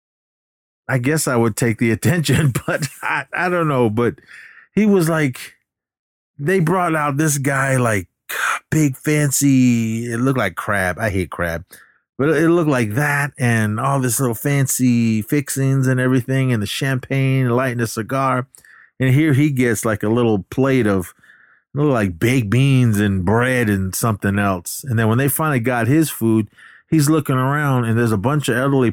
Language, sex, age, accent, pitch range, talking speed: English, male, 30-49, American, 105-135 Hz, 175 wpm